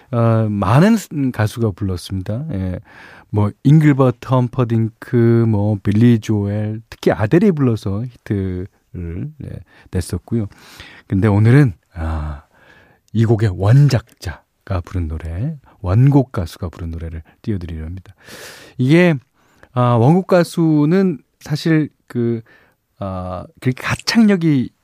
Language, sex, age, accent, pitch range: Korean, male, 40-59, native, 100-145 Hz